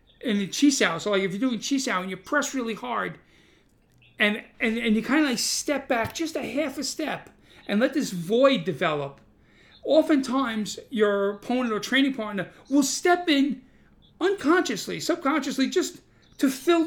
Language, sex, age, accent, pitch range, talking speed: English, male, 40-59, American, 210-275 Hz, 175 wpm